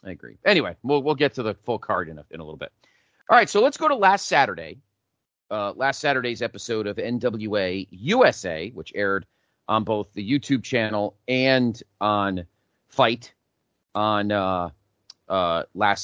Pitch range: 100-140 Hz